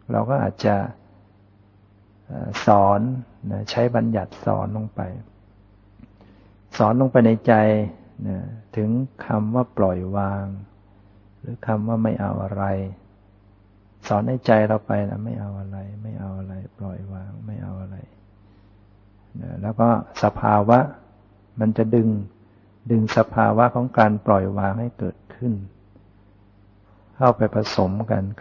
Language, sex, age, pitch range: Thai, male, 60-79, 100-115 Hz